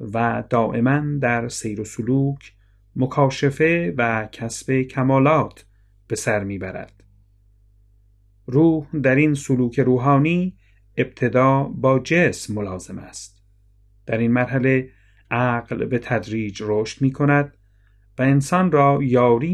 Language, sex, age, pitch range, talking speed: Persian, male, 40-59, 100-130 Hz, 110 wpm